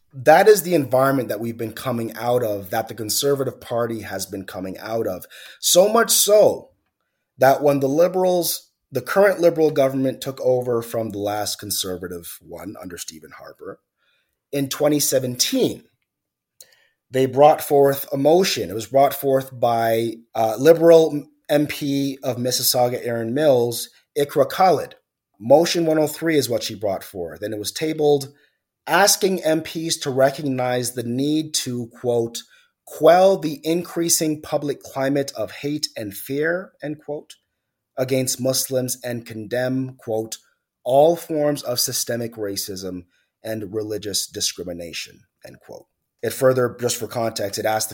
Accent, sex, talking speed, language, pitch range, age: American, male, 140 wpm, English, 110-150 Hz, 30-49